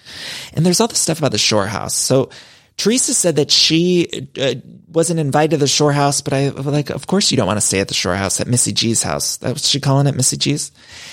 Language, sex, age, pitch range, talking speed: English, male, 30-49, 120-160 Hz, 250 wpm